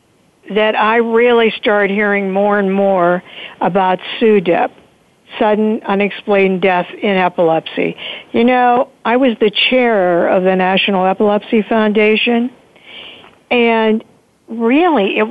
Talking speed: 115 wpm